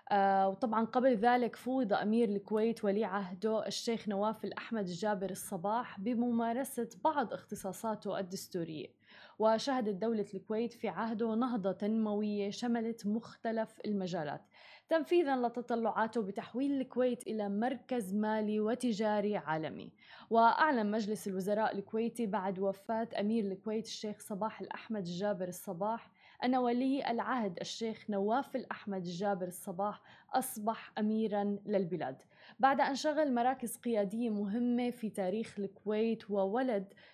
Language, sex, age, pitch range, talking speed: Arabic, female, 20-39, 200-235 Hz, 115 wpm